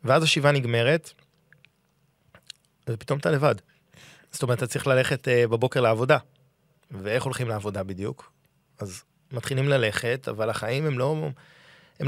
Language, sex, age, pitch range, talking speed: Hebrew, male, 20-39, 115-145 Hz, 130 wpm